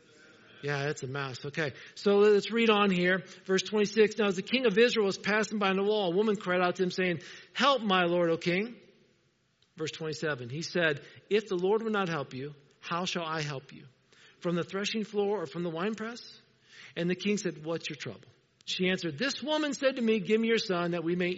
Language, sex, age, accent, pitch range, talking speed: English, male, 50-69, American, 165-210 Hz, 225 wpm